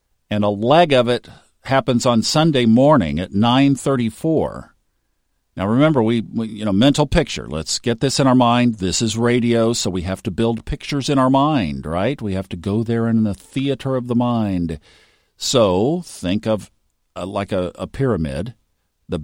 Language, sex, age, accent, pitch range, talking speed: English, male, 50-69, American, 100-135 Hz, 180 wpm